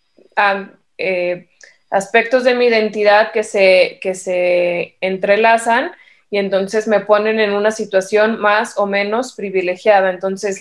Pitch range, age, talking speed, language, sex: 190-220 Hz, 20-39, 130 wpm, Spanish, female